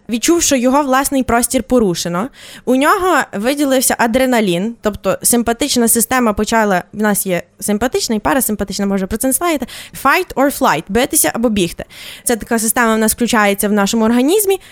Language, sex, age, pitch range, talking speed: Ukrainian, female, 20-39, 210-280 Hz, 160 wpm